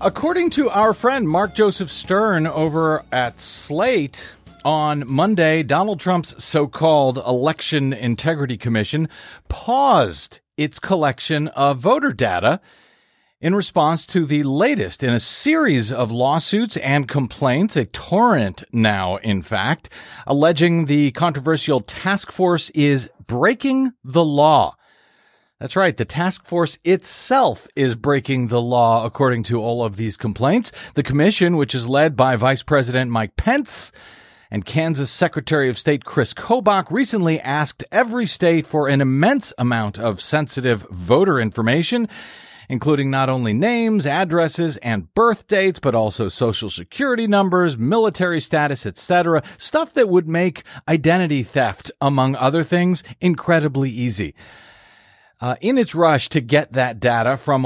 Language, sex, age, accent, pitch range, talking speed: English, male, 40-59, American, 125-170 Hz, 135 wpm